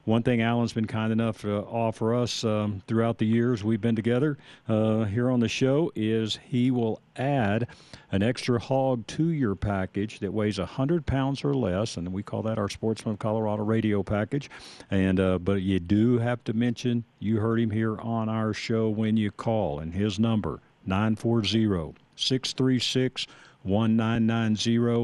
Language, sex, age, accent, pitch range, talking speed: English, male, 50-69, American, 95-115 Hz, 165 wpm